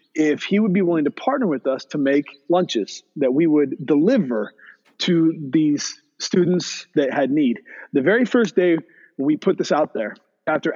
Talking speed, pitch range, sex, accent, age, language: 180 wpm, 145-200 Hz, male, American, 30-49, English